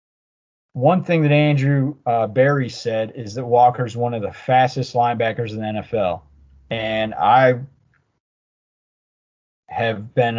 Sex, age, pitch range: male, 30-49, 110-135 Hz